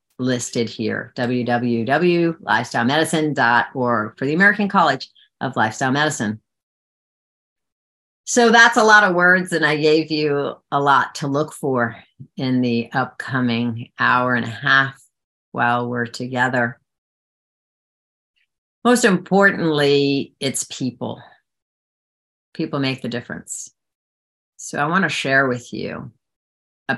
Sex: female